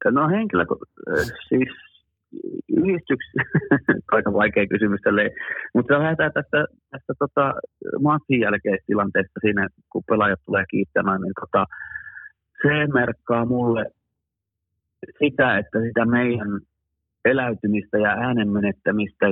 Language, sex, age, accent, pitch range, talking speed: Finnish, male, 30-49, native, 95-115 Hz, 105 wpm